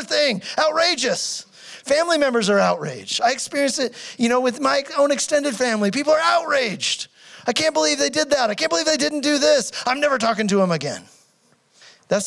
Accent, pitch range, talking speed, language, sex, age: American, 180-255 Hz, 190 wpm, English, male, 30-49